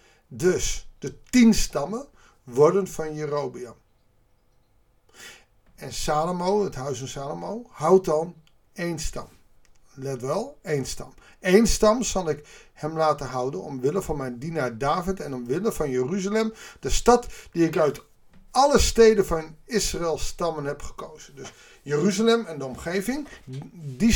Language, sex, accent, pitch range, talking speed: Dutch, male, Dutch, 130-195 Hz, 135 wpm